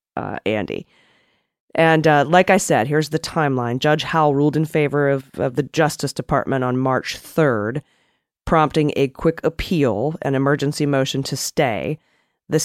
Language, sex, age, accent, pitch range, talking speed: English, female, 30-49, American, 135-170 Hz, 155 wpm